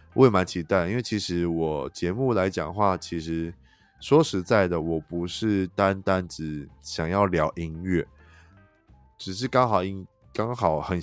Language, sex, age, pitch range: Chinese, male, 20-39, 80-95 Hz